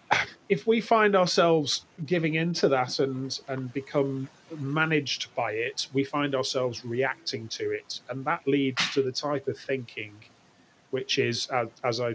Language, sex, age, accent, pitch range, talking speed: English, male, 30-49, British, 125-155 Hz, 160 wpm